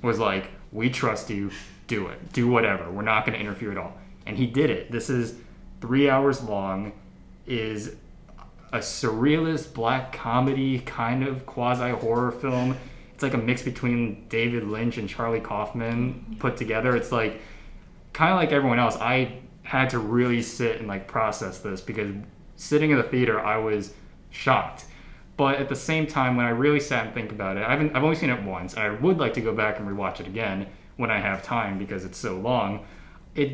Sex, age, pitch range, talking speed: male, 20-39, 105-130 Hz, 195 wpm